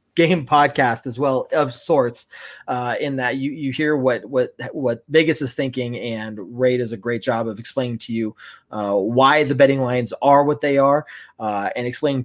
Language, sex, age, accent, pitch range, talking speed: English, male, 30-49, American, 125-155 Hz, 195 wpm